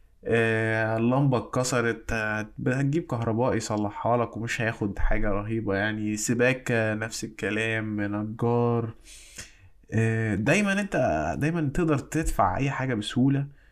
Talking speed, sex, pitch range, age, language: 100 wpm, male, 105-140 Hz, 20-39, Arabic